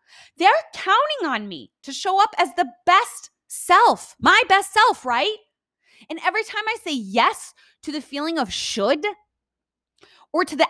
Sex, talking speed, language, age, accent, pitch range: female, 165 wpm, English, 20-39, American, 200-310 Hz